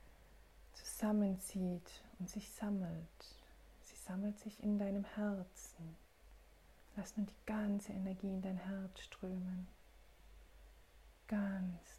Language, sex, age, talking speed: German, female, 40-59, 100 wpm